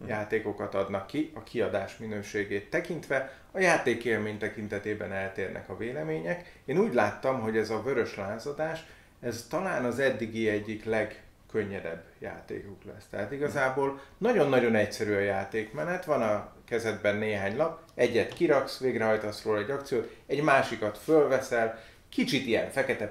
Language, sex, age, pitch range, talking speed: Hungarian, male, 30-49, 105-130 Hz, 135 wpm